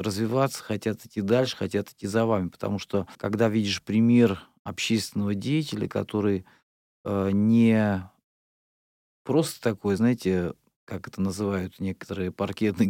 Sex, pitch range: male, 100-115 Hz